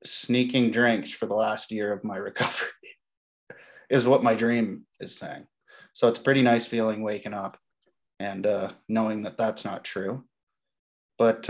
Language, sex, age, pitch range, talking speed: English, male, 20-39, 110-120 Hz, 155 wpm